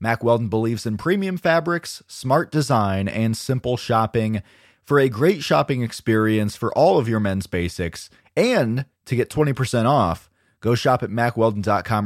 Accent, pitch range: American, 100-135 Hz